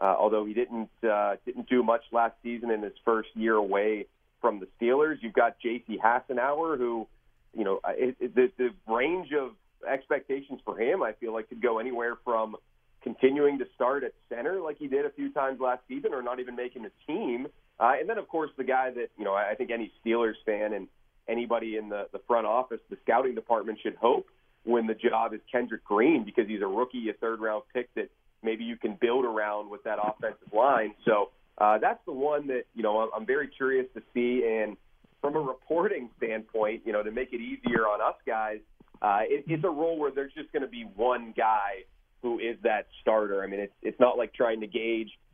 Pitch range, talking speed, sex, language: 110-130 Hz, 220 wpm, male, English